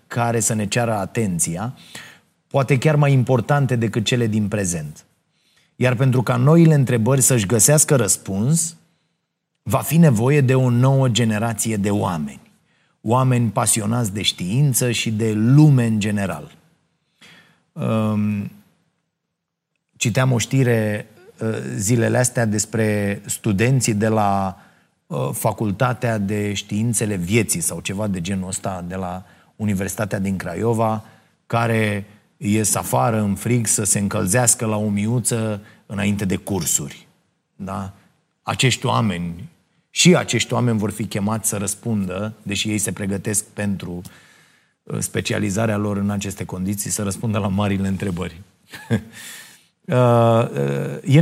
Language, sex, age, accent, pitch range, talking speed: Romanian, male, 30-49, native, 100-125 Hz, 120 wpm